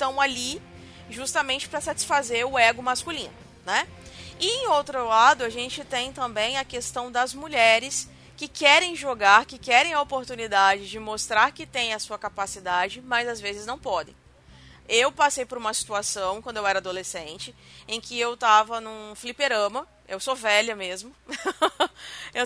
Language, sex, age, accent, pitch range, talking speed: Portuguese, female, 20-39, Brazilian, 220-285 Hz, 160 wpm